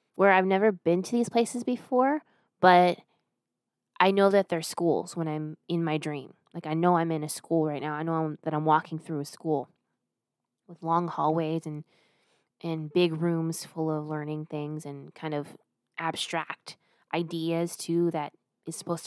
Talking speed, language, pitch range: 180 wpm, English, 160-185 Hz